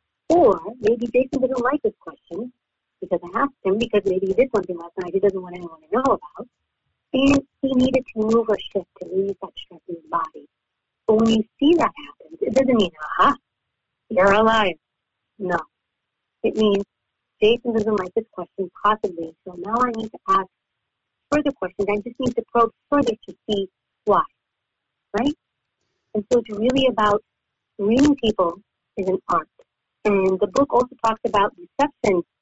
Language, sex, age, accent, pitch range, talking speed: English, female, 50-69, American, 190-240 Hz, 180 wpm